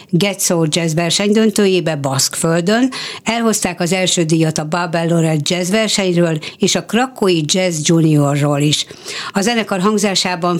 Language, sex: Hungarian, female